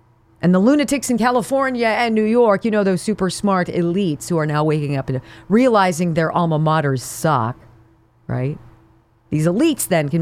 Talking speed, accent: 175 wpm, American